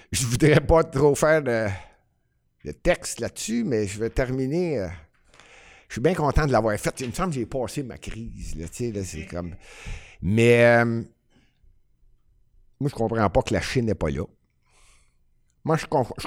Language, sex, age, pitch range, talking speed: French, male, 60-79, 120-200 Hz, 185 wpm